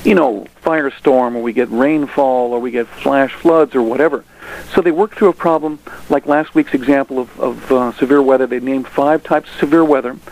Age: 50-69